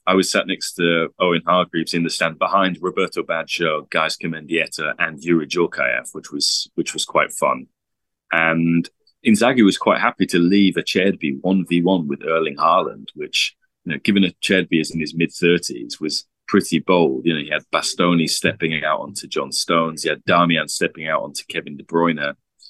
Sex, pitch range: male, 80-95 Hz